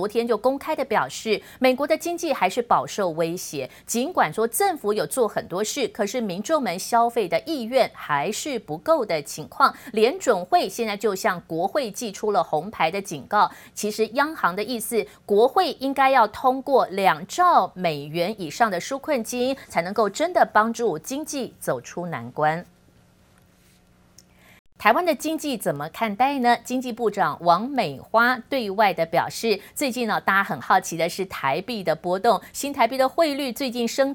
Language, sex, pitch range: Chinese, female, 180-260 Hz